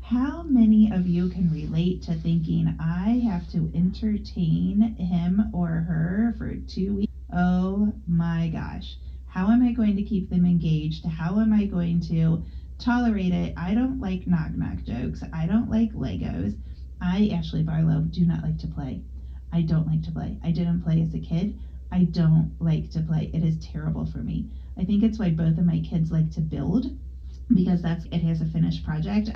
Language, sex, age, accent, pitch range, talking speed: English, female, 30-49, American, 165-210 Hz, 185 wpm